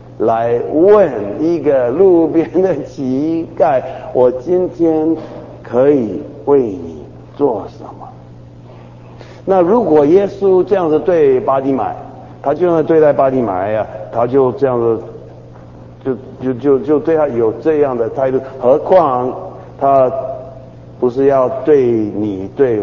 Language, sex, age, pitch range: Chinese, male, 50-69, 110-135 Hz